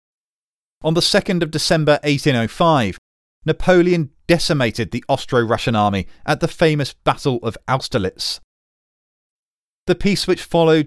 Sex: male